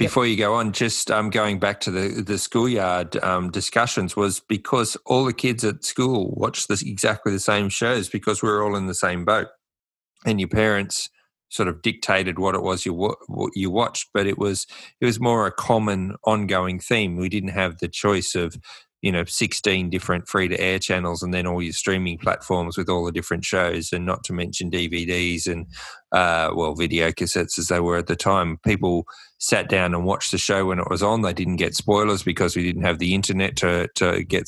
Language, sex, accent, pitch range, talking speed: English, male, Australian, 90-100 Hz, 215 wpm